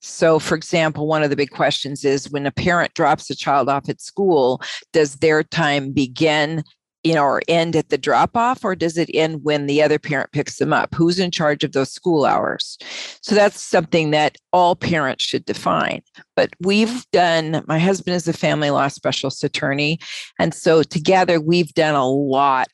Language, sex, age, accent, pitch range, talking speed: English, female, 40-59, American, 145-170 Hz, 190 wpm